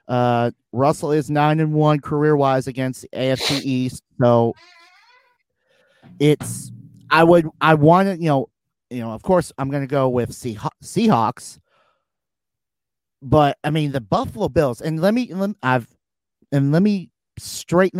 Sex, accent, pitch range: male, American, 130-175 Hz